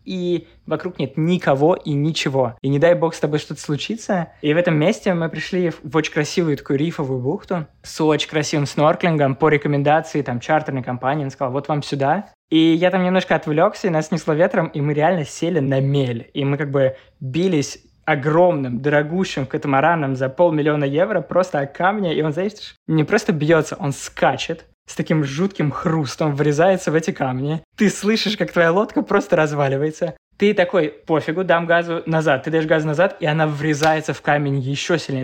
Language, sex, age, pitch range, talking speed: Russian, male, 20-39, 145-180 Hz, 185 wpm